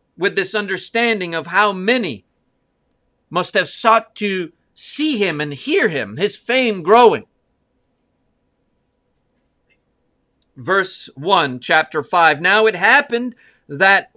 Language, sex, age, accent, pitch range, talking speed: English, male, 50-69, American, 175-245 Hz, 110 wpm